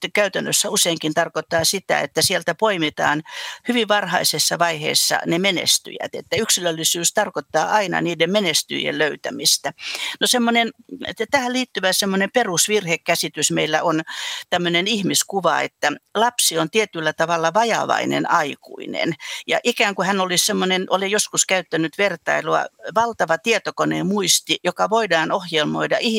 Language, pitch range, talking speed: Finnish, 165-215 Hz, 115 wpm